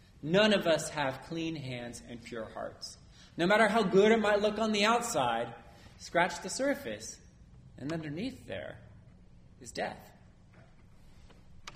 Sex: male